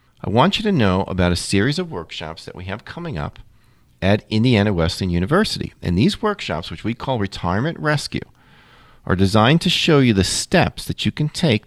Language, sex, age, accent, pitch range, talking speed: English, male, 40-59, American, 105-145 Hz, 195 wpm